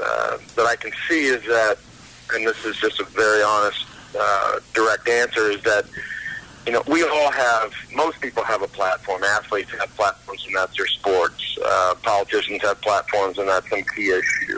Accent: American